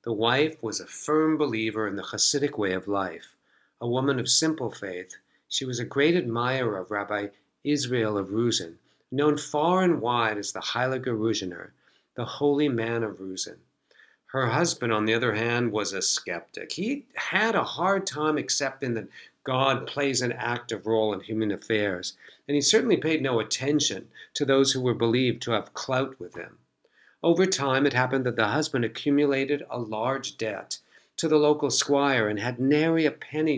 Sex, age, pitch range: male, 50-69, 115-150 Hz